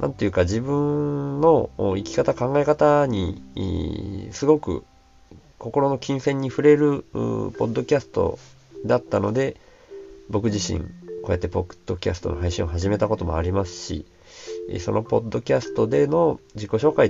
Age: 40-59